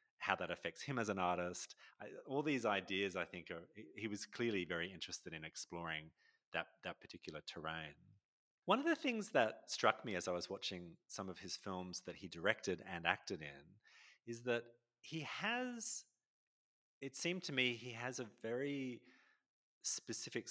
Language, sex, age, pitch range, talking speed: English, male, 30-49, 95-135 Hz, 165 wpm